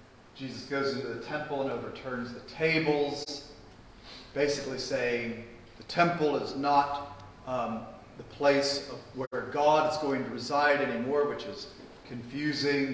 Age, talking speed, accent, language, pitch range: 40-59, 135 wpm, American, English, 120-150 Hz